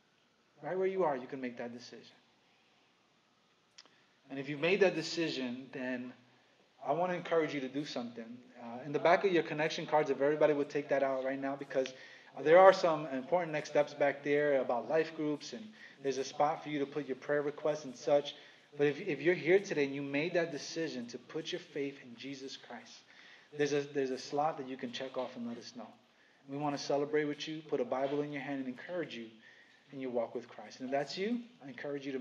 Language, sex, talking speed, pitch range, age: English, male, 235 wpm, 135-165 Hz, 30-49